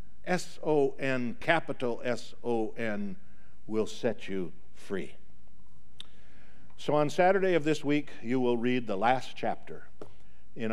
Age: 60-79